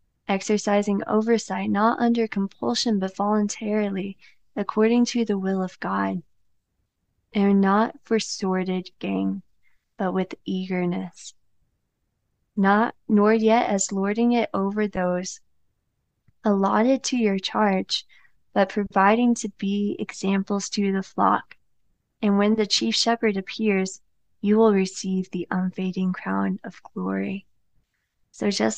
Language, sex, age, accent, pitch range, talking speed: English, female, 20-39, American, 185-210 Hz, 120 wpm